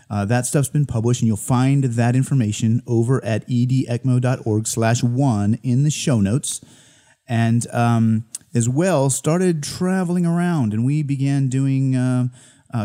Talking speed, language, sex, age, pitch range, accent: 150 wpm, English, male, 30-49, 105-130 Hz, American